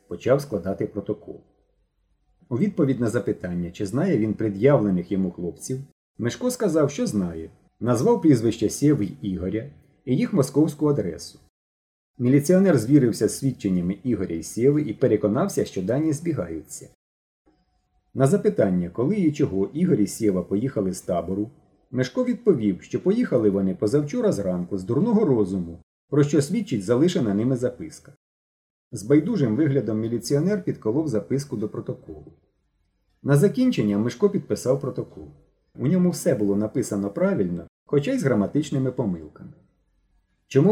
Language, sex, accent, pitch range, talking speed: Ukrainian, male, native, 100-145 Hz, 135 wpm